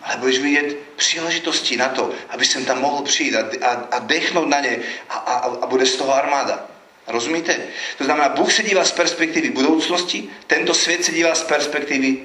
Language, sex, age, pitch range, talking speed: Slovak, male, 40-59, 135-175 Hz, 190 wpm